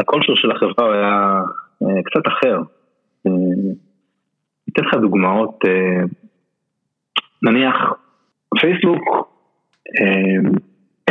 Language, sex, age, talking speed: Hebrew, male, 30-49, 85 wpm